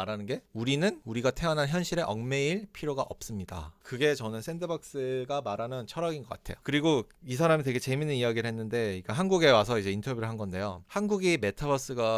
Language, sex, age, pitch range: Korean, male, 30-49, 105-145 Hz